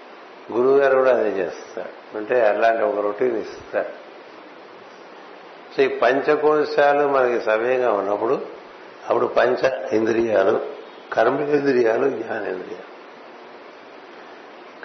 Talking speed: 85 wpm